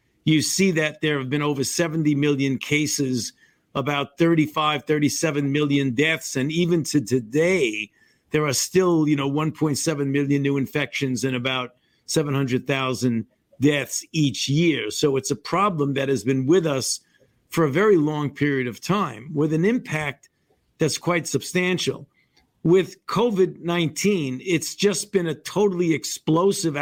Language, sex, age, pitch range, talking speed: English, male, 50-69, 140-170 Hz, 145 wpm